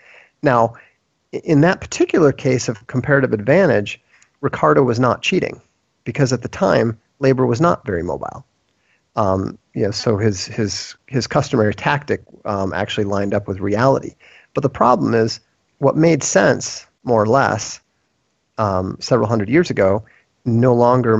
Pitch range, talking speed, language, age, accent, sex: 105-125 Hz, 150 wpm, English, 40-59, American, male